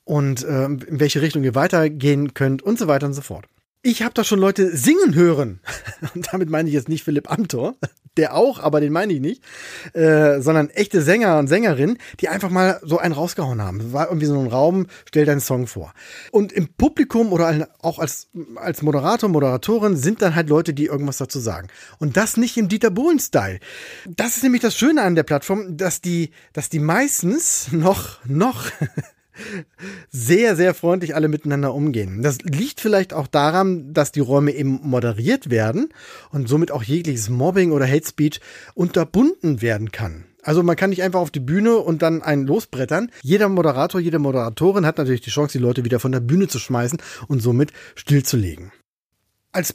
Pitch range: 135-185 Hz